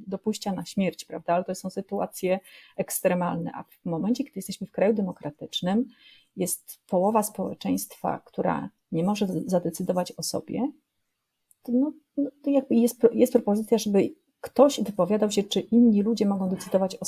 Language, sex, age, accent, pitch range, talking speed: Polish, female, 30-49, native, 195-235 Hz, 150 wpm